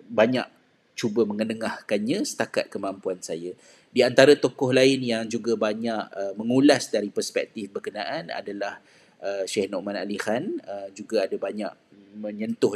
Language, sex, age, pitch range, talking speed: Malay, male, 30-49, 105-135 Hz, 135 wpm